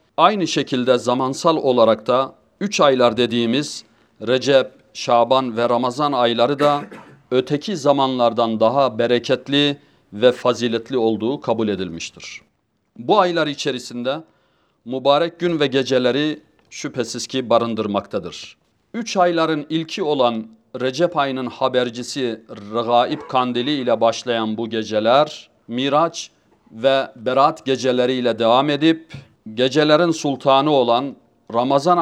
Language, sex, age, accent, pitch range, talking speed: Turkish, male, 40-59, native, 120-150 Hz, 105 wpm